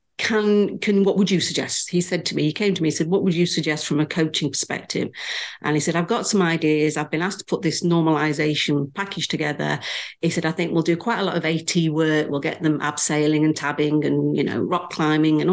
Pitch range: 155-180 Hz